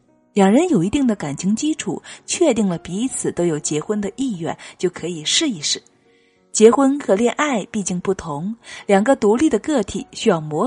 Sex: female